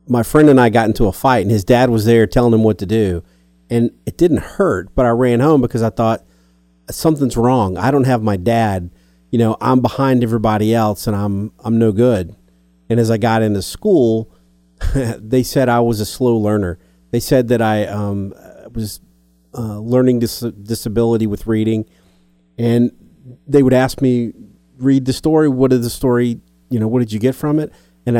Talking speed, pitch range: 195 wpm, 100-130 Hz